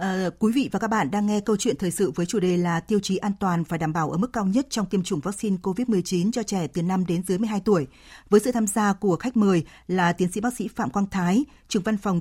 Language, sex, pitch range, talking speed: Vietnamese, female, 180-215 Hz, 285 wpm